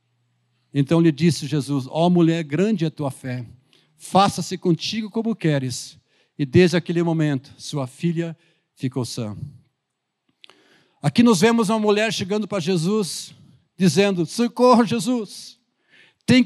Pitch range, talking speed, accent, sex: 150-225 Hz, 130 wpm, Brazilian, male